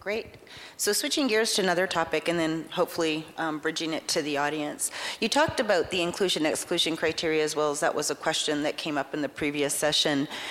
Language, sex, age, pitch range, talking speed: English, female, 40-59, 155-190 Hz, 210 wpm